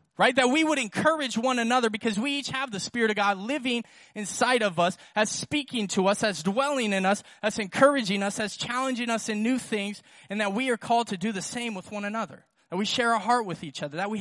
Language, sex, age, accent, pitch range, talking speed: English, male, 20-39, American, 200-240 Hz, 245 wpm